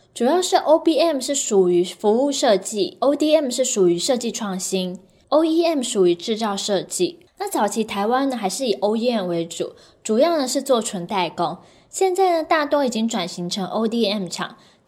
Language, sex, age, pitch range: Chinese, female, 10-29, 195-280 Hz